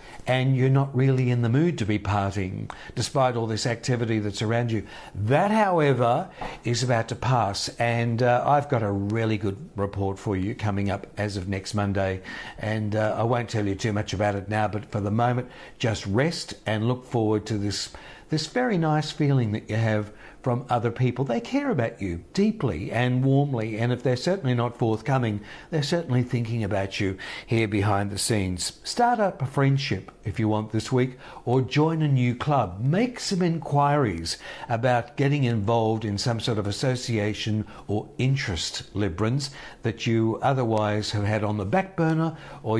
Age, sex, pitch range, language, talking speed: 60-79, male, 105-135 Hz, English, 185 wpm